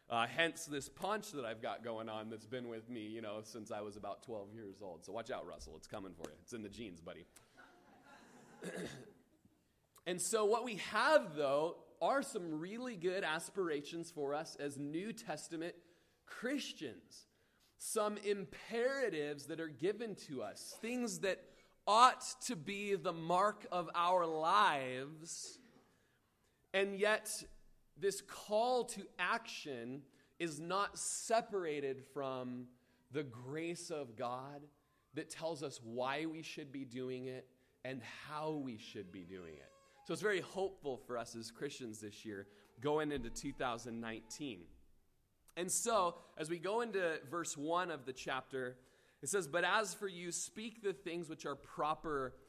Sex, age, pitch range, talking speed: male, 30-49, 125-190 Hz, 155 wpm